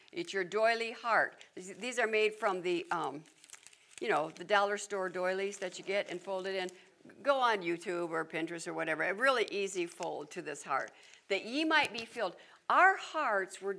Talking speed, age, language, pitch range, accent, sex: 195 wpm, 60-79, English, 195-310 Hz, American, female